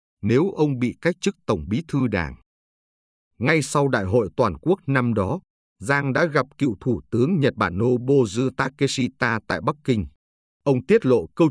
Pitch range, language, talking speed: 100-140 Hz, Vietnamese, 175 wpm